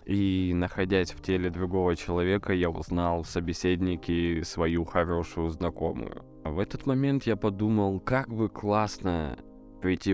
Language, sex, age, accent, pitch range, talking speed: Russian, male, 20-39, native, 85-95 Hz, 125 wpm